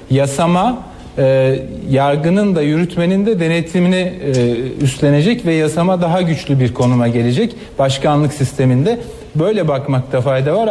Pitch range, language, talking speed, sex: 145-180 Hz, Turkish, 125 wpm, male